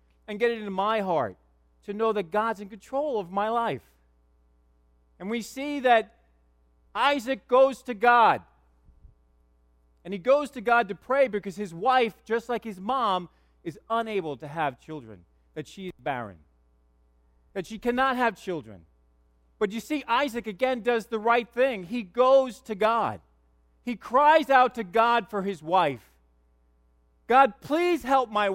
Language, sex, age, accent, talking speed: English, male, 40-59, American, 160 wpm